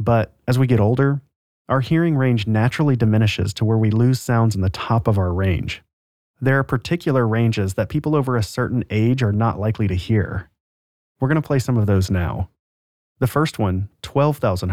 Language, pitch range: English, 95-125 Hz